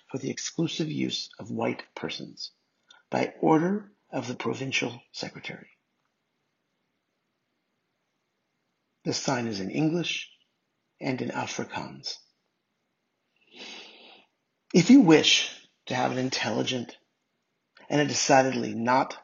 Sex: male